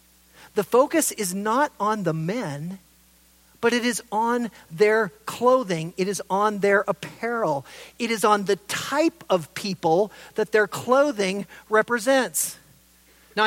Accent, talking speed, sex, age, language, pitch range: American, 135 wpm, male, 40-59, English, 180-225 Hz